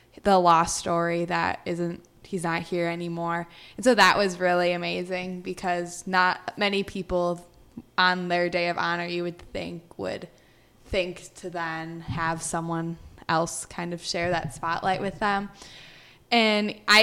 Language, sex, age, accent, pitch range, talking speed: English, female, 10-29, American, 170-190 Hz, 150 wpm